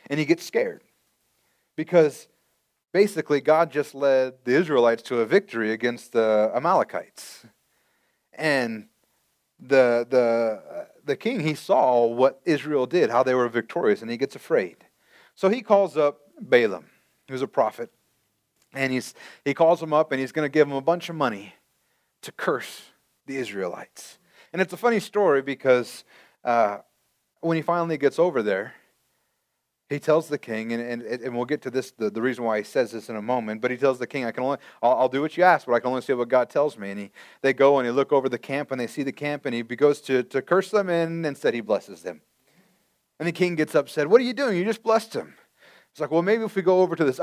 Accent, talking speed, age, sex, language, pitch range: American, 220 wpm, 30-49, male, English, 125-175 Hz